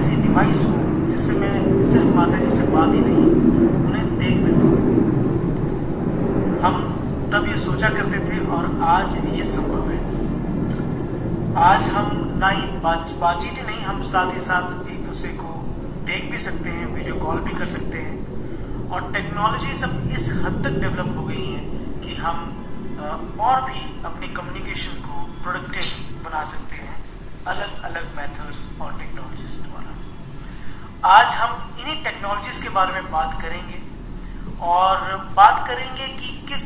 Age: 30-49